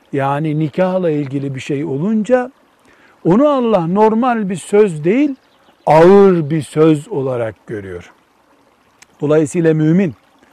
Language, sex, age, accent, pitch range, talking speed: Turkish, male, 60-79, native, 150-220 Hz, 110 wpm